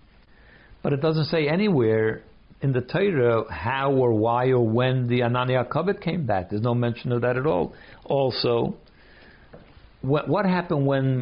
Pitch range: 120-155 Hz